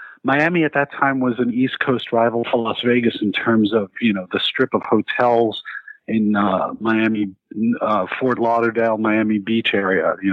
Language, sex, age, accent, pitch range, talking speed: English, male, 50-69, American, 105-140 Hz, 180 wpm